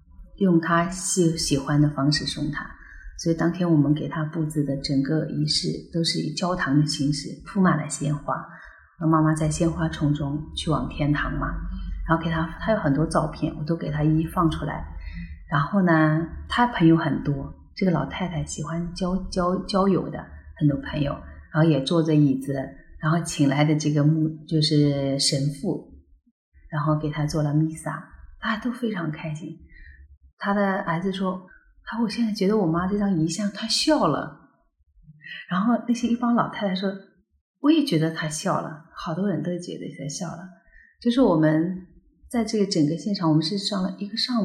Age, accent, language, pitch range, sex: 30-49, native, Chinese, 150-195 Hz, female